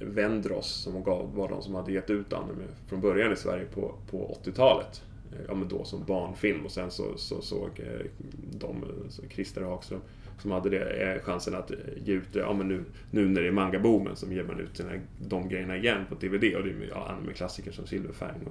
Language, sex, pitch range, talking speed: Swedish, male, 95-115 Hz, 210 wpm